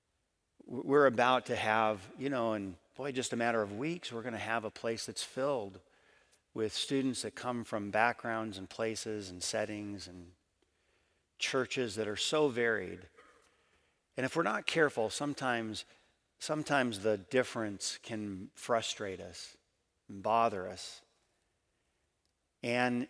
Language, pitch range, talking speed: English, 105-130 Hz, 140 wpm